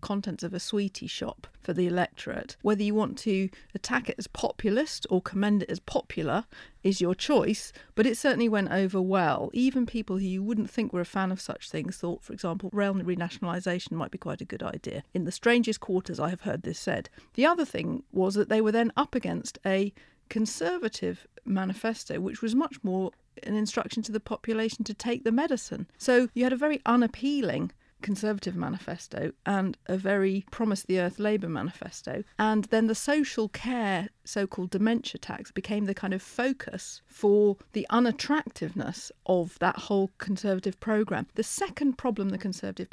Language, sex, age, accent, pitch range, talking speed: English, female, 40-59, British, 185-230 Hz, 180 wpm